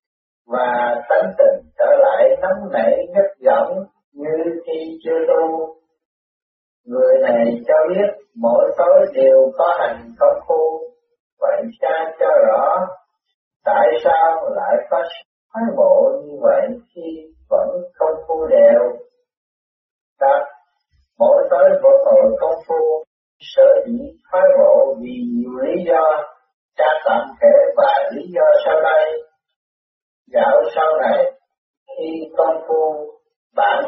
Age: 50-69